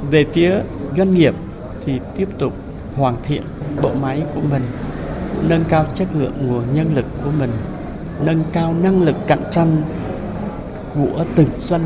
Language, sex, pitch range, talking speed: Vietnamese, male, 135-175 Hz, 155 wpm